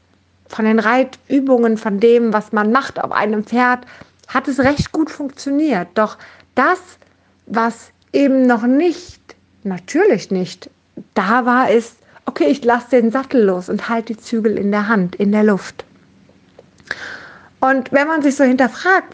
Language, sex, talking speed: German, female, 155 wpm